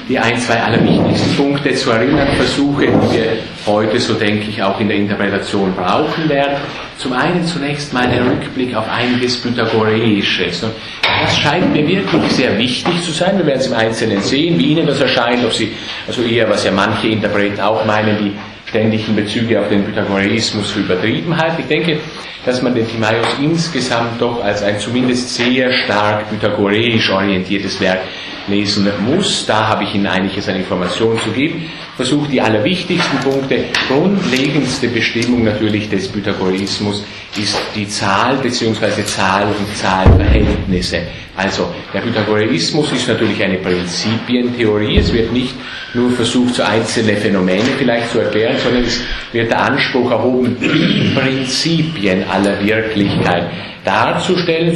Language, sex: German, male